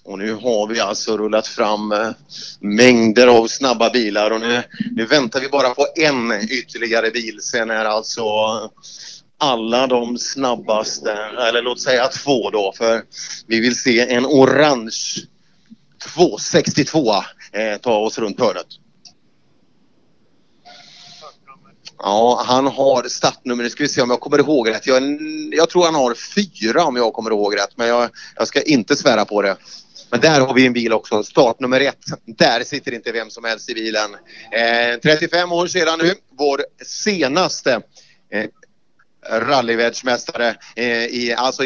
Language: Swedish